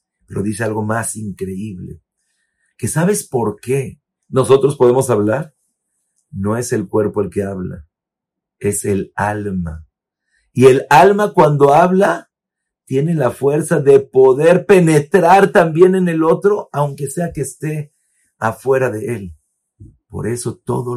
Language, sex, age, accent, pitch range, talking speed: Spanish, male, 50-69, Mexican, 100-145 Hz, 135 wpm